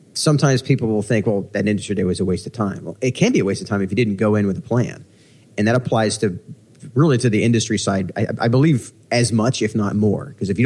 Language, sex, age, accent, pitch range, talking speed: English, male, 30-49, American, 100-125 Hz, 275 wpm